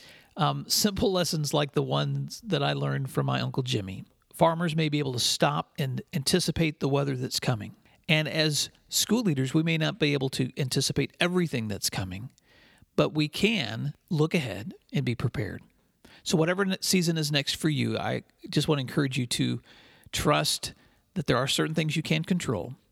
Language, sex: English, male